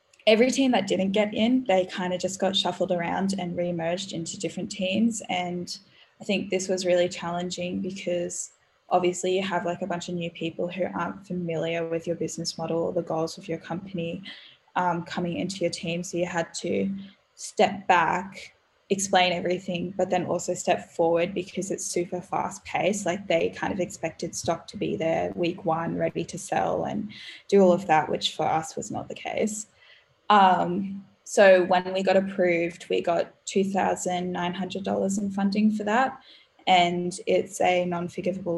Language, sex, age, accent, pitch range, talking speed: English, female, 10-29, Australian, 175-195 Hz, 175 wpm